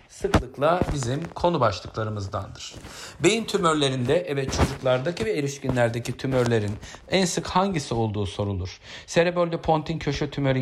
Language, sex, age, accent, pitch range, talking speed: Turkish, male, 50-69, native, 110-165 Hz, 115 wpm